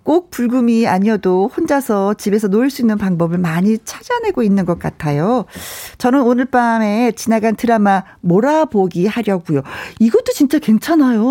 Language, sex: Korean, female